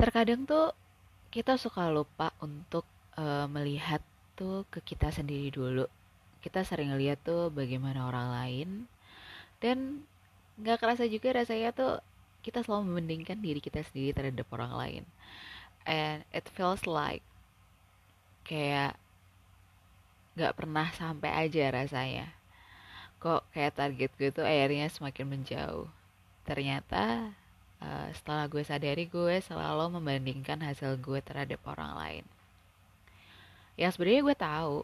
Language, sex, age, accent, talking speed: Indonesian, female, 20-39, native, 115 wpm